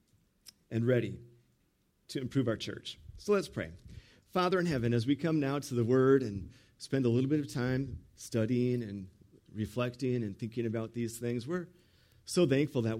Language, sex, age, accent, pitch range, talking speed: English, male, 40-59, American, 105-125 Hz, 175 wpm